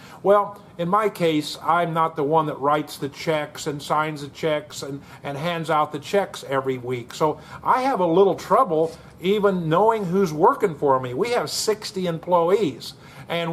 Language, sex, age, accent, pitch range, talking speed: English, male, 50-69, American, 155-190 Hz, 180 wpm